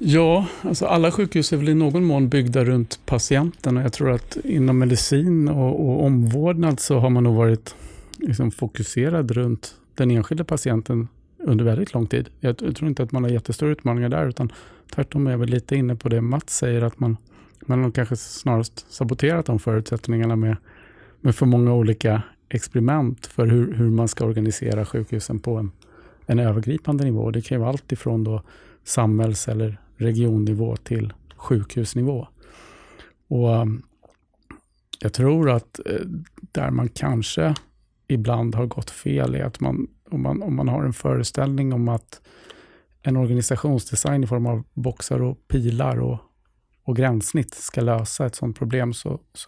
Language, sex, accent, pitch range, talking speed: Swedish, male, Norwegian, 115-135 Hz, 165 wpm